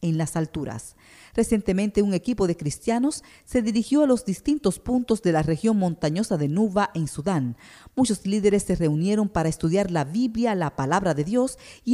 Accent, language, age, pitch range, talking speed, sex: American, English, 40-59, 160-225 Hz, 175 wpm, female